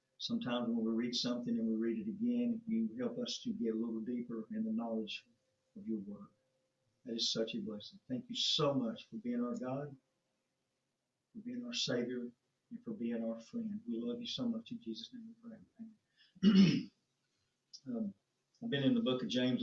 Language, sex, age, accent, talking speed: English, male, 50-69, American, 200 wpm